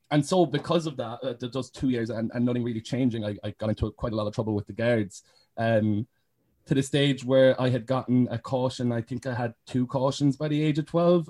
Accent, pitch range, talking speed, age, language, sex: Irish, 115-140 Hz, 250 wpm, 20-39, English, male